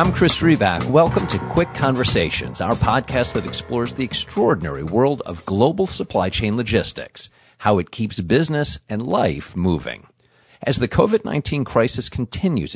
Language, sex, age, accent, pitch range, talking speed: English, male, 50-69, American, 95-135 Hz, 145 wpm